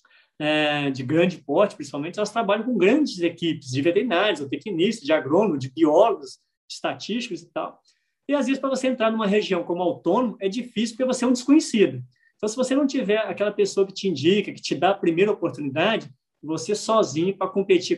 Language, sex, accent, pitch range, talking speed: Portuguese, male, Brazilian, 160-210 Hz, 195 wpm